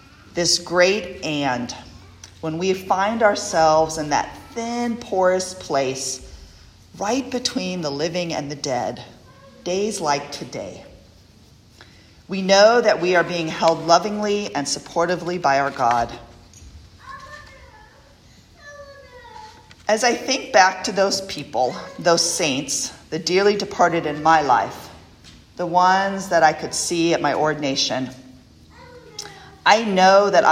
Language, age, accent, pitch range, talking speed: English, 40-59, American, 150-195 Hz, 120 wpm